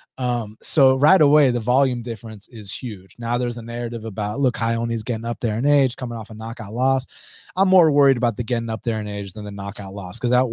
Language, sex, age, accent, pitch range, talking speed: English, male, 20-39, American, 120-155 Hz, 240 wpm